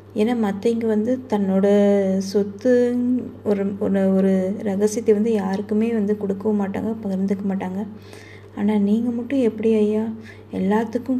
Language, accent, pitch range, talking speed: Tamil, native, 190-215 Hz, 115 wpm